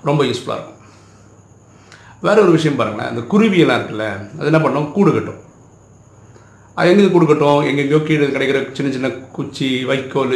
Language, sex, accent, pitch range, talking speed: Tamil, male, native, 115-155 Hz, 145 wpm